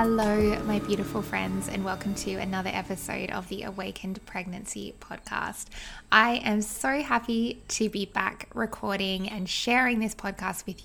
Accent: Australian